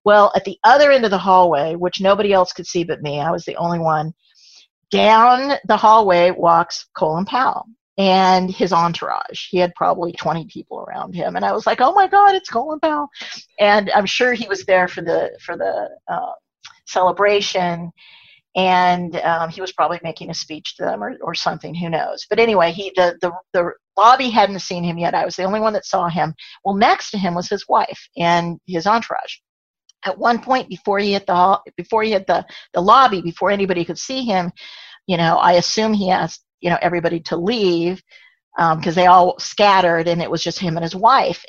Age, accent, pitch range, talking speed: 40-59, American, 175-215 Hz, 210 wpm